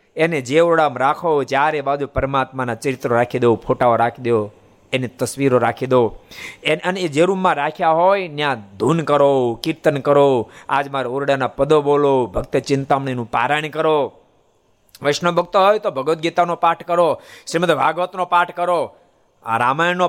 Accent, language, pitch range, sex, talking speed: native, Gujarati, 130-205 Hz, male, 130 wpm